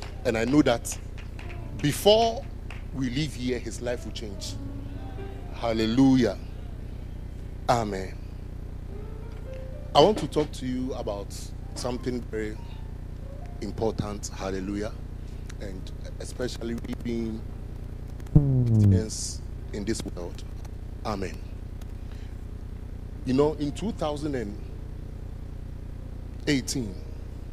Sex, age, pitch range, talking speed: male, 30-49, 95-120 Hz, 80 wpm